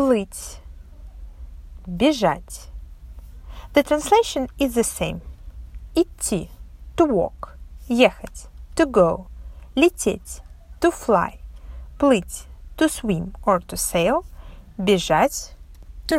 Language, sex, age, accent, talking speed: Russian, female, 30-49, native, 90 wpm